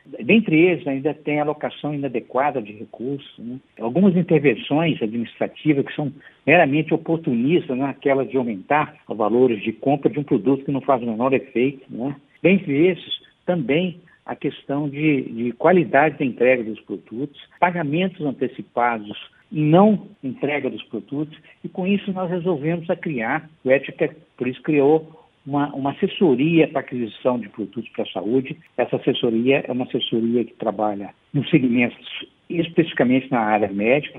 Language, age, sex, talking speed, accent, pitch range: Portuguese, 60-79, male, 155 wpm, Brazilian, 125-160 Hz